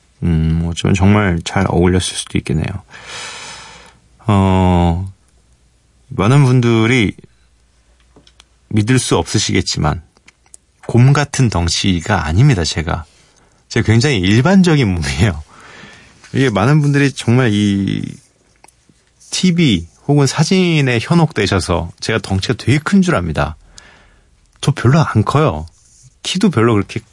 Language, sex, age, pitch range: Korean, male, 40-59, 95-135 Hz